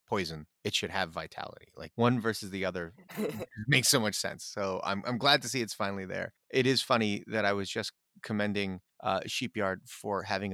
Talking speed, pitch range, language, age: 200 wpm, 90-120 Hz, English, 30-49